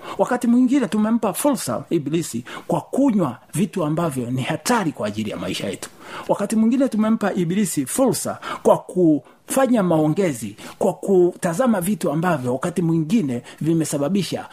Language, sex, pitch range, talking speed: Swahili, male, 140-195 Hz, 130 wpm